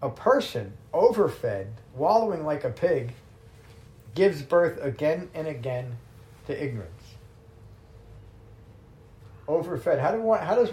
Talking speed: 100 wpm